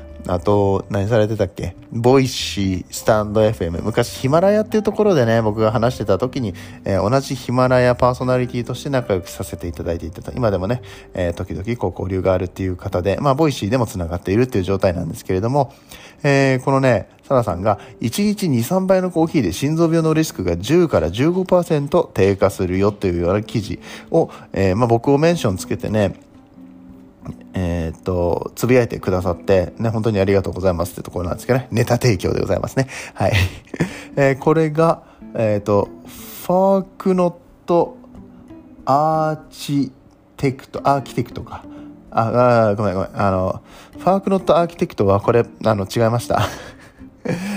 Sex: male